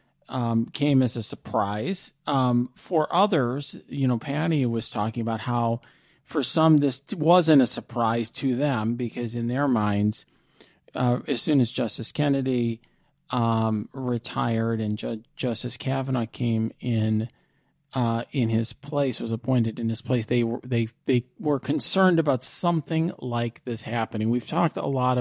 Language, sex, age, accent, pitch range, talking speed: English, male, 40-59, American, 115-150 Hz, 155 wpm